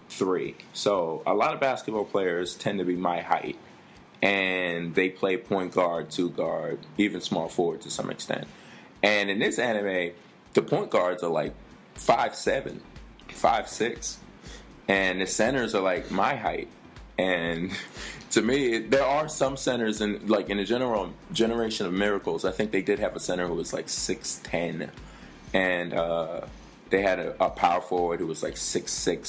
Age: 20-39